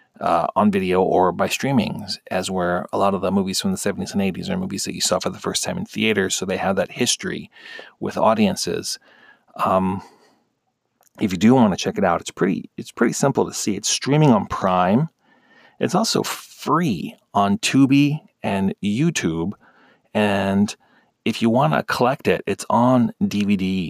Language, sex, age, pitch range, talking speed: English, male, 40-59, 100-165 Hz, 185 wpm